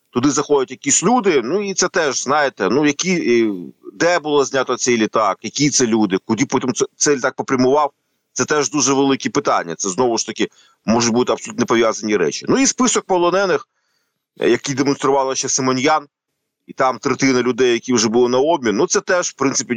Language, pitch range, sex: Ukrainian, 125-170 Hz, male